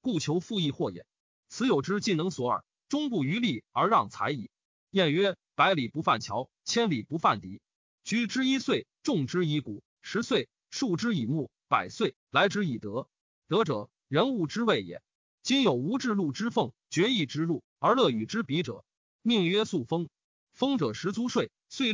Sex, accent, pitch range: male, native, 160-225 Hz